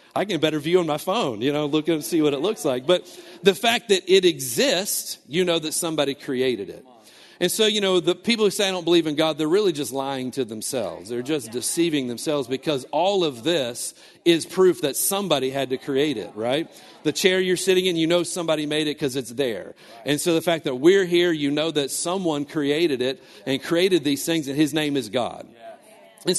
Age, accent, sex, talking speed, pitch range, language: 40-59, American, male, 225 wpm, 130-170 Hz, English